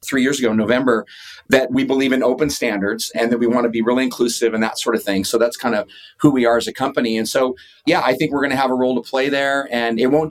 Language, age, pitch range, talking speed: English, 30-49, 115-140 Hz, 290 wpm